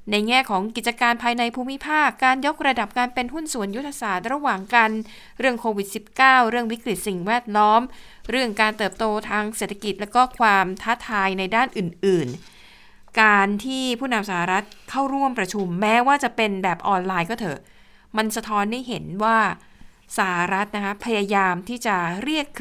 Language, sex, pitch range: Thai, female, 190-240 Hz